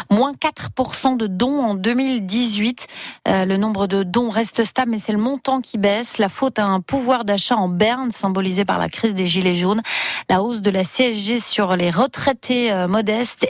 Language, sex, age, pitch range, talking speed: French, female, 30-49, 190-245 Hz, 195 wpm